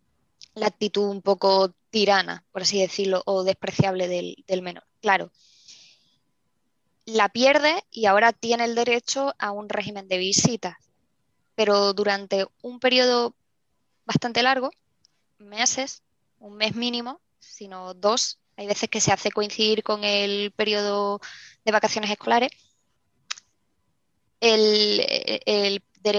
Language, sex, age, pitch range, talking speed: Spanish, female, 20-39, 200-230 Hz, 120 wpm